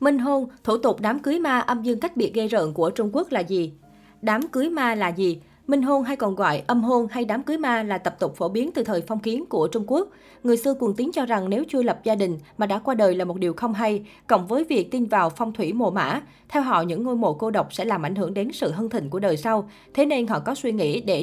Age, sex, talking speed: 20-39, female, 285 wpm